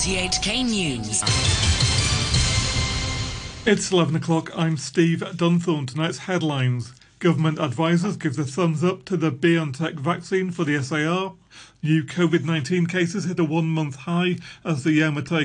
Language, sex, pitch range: English, male, 145-175 Hz